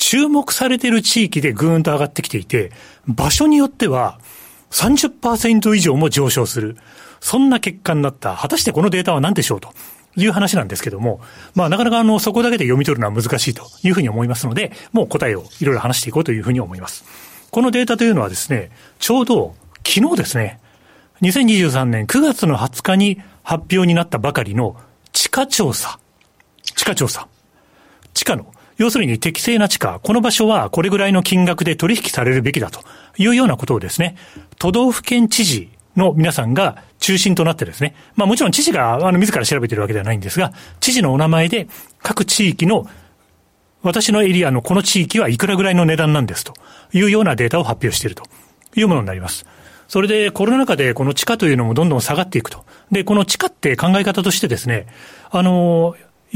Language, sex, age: Japanese, male, 40-59